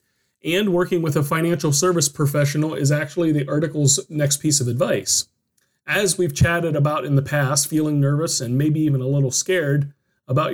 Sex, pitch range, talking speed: male, 140-170 Hz, 175 wpm